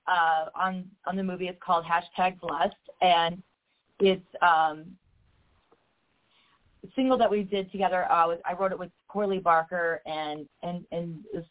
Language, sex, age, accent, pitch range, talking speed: English, female, 30-49, American, 160-195 Hz, 155 wpm